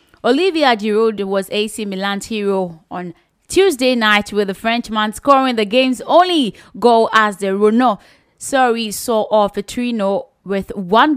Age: 20-39